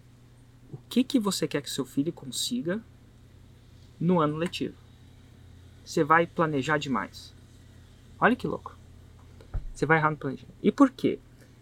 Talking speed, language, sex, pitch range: 140 wpm, Portuguese, male, 125-165 Hz